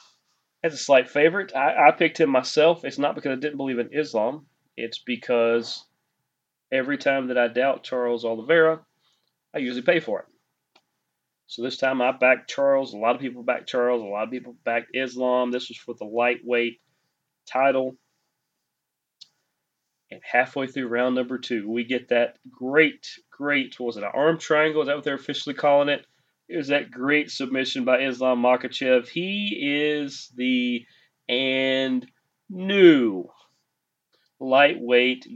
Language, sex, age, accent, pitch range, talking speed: English, male, 30-49, American, 120-145 Hz, 160 wpm